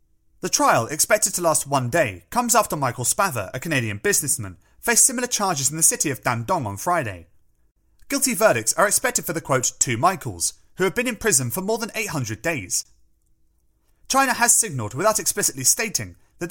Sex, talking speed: male, 180 wpm